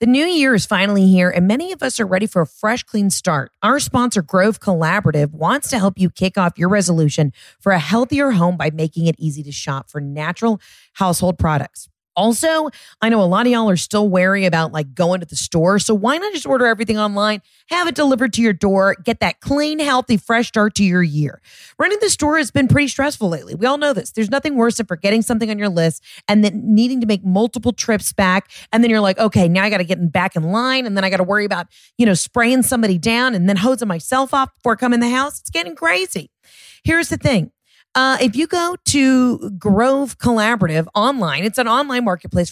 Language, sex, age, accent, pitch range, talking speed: English, female, 30-49, American, 180-250 Hz, 230 wpm